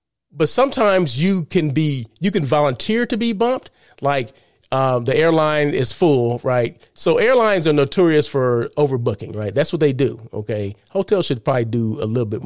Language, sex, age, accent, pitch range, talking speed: English, male, 30-49, American, 130-170 Hz, 180 wpm